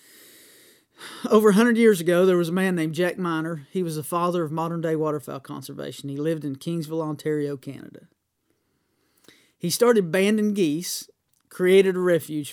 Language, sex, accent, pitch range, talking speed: English, male, American, 155-195 Hz, 155 wpm